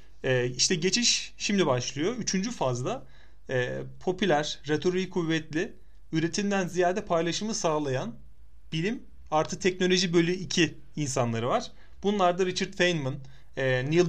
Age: 30-49